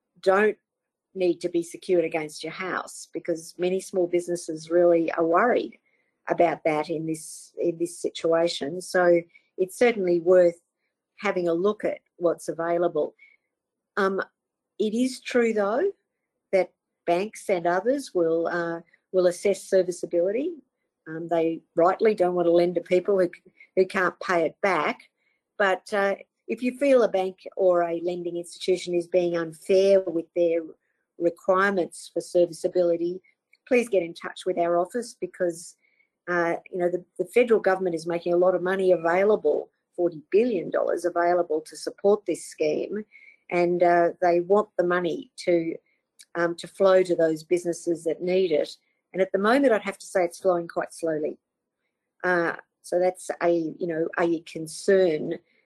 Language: English